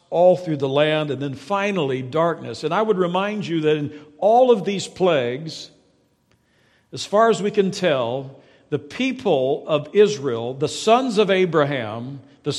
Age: 60-79